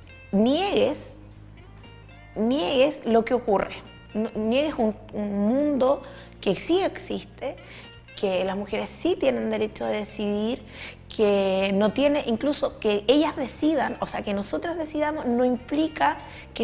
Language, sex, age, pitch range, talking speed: Spanish, female, 20-39, 195-255 Hz, 125 wpm